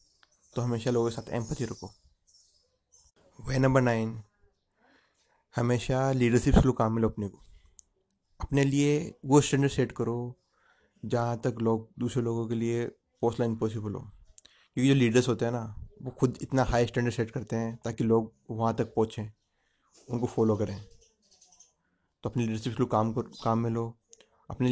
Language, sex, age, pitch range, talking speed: Hindi, male, 30-49, 110-130 Hz, 155 wpm